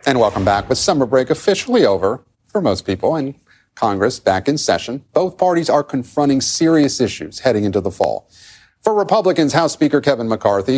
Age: 40-59